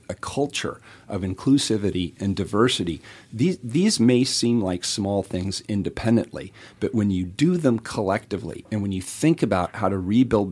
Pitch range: 90-110 Hz